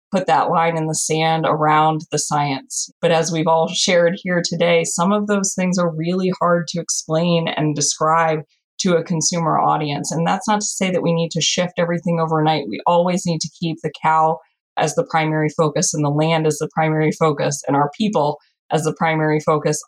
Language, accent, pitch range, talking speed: English, American, 160-195 Hz, 205 wpm